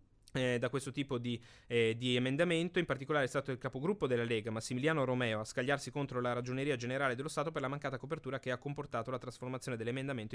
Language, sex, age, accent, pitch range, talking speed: Italian, male, 20-39, native, 115-135 Hz, 210 wpm